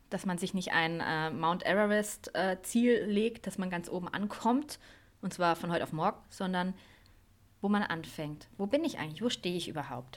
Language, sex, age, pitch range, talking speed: German, female, 20-39, 165-230 Hz, 200 wpm